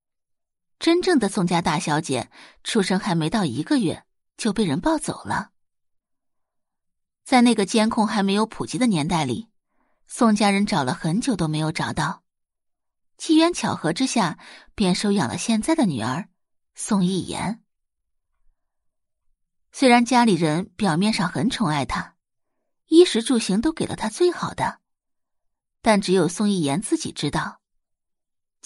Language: Chinese